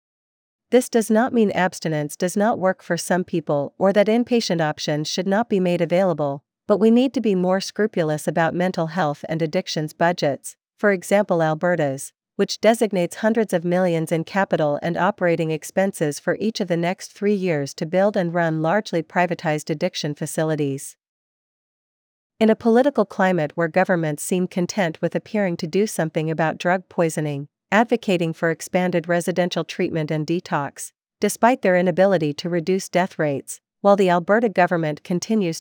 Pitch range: 160-200 Hz